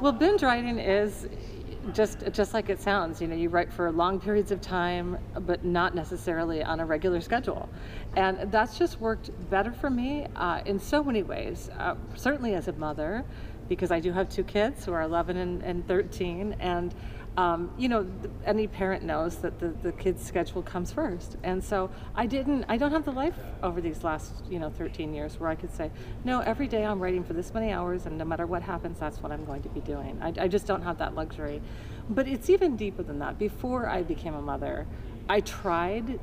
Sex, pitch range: female, 165-210 Hz